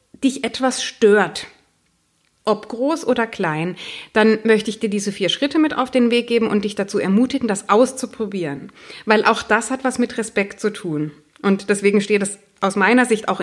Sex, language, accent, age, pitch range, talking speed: female, German, German, 30-49, 190-240 Hz, 190 wpm